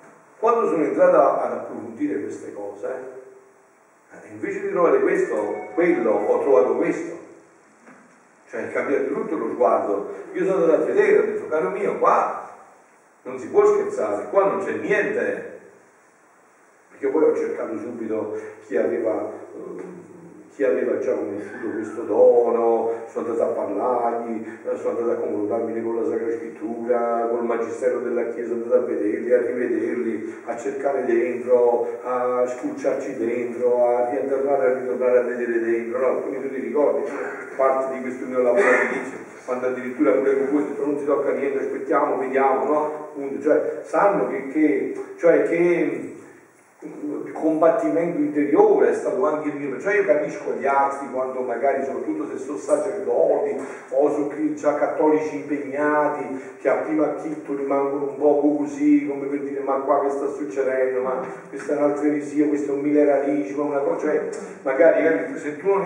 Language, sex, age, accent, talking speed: Italian, male, 50-69, native, 160 wpm